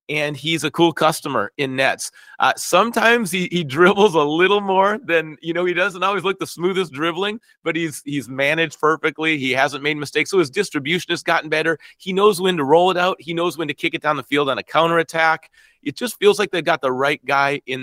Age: 40-59